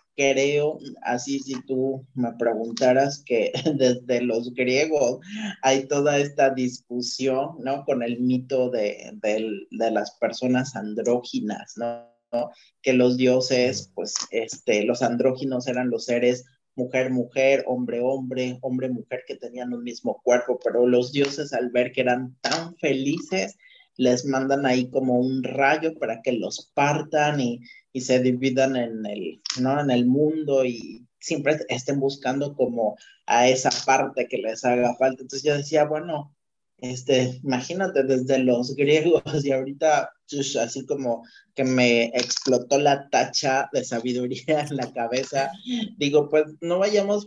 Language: Spanish